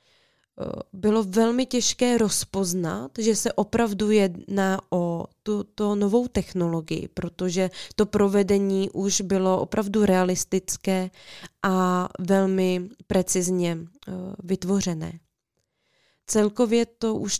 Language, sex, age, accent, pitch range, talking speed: Czech, female, 20-39, native, 185-230 Hz, 90 wpm